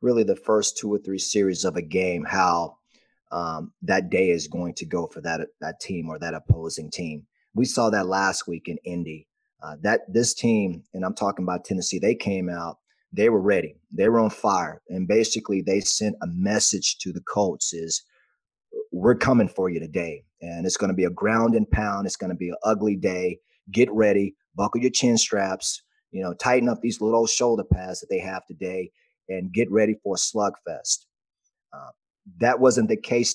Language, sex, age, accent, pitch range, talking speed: English, male, 30-49, American, 95-130 Hz, 200 wpm